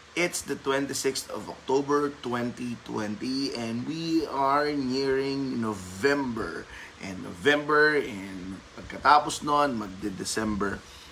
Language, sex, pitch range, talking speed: Filipino, male, 110-145 Hz, 85 wpm